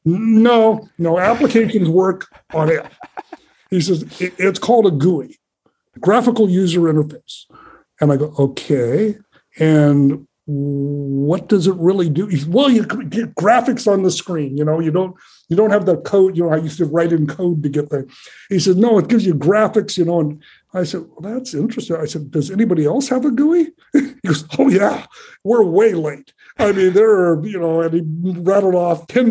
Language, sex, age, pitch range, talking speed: English, male, 60-79, 155-215 Hz, 195 wpm